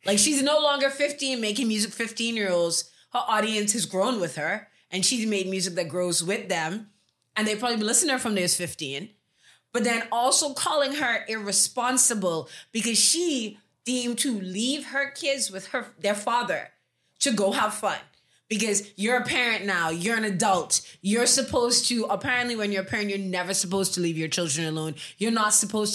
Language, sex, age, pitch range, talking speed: English, female, 20-39, 175-230 Hz, 185 wpm